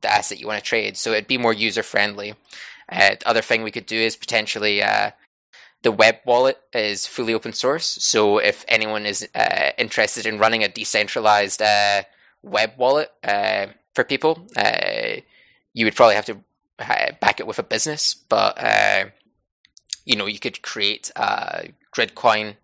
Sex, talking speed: male, 170 wpm